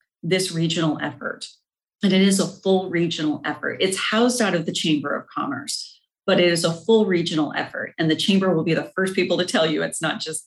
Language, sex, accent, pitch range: English, female, American, 160-200 Hz